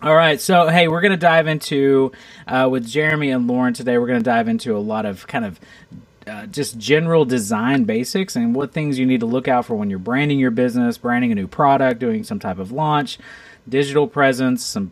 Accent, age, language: American, 30-49, English